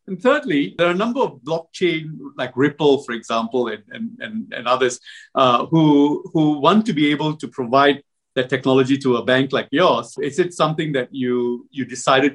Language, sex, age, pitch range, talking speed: English, male, 50-69, 130-175 Hz, 195 wpm